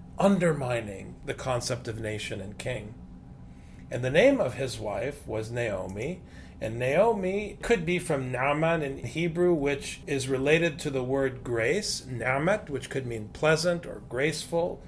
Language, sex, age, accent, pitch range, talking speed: English, male, 40-59, American, 130-185 Hz, 150 wpm